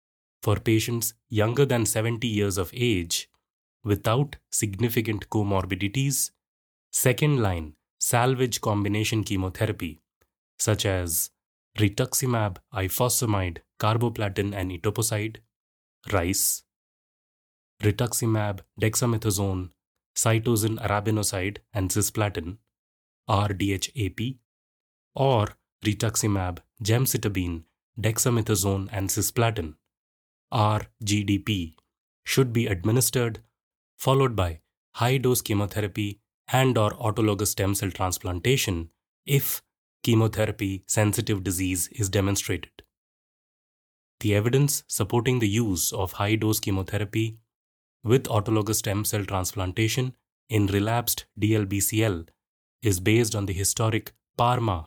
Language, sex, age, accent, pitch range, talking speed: English, male, 20-39, Indian, 95-115 Hz, 85 wpm